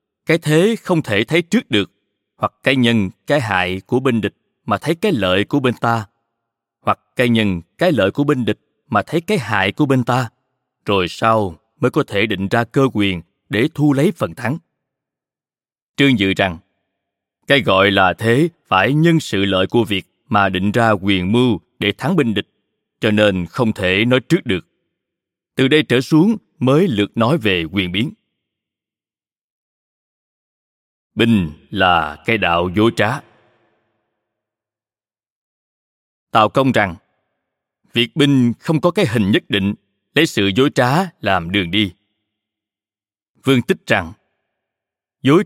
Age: 20-39